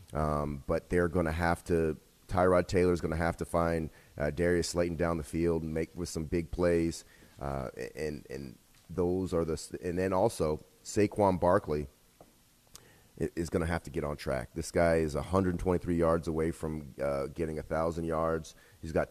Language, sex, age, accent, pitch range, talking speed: English, male, 30-49, American, 75-90 Hz, 190 wpm